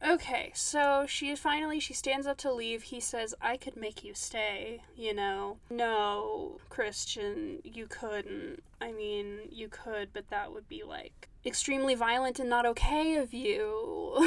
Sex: female